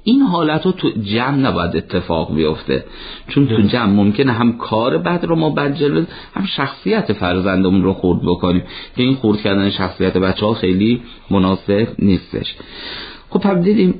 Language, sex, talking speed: Persian, male, 160 wpm